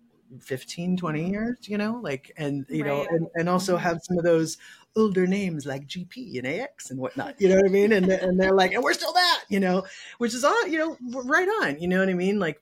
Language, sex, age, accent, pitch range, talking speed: English, female, 30-49, American, 145-195 Hz, 245 wpm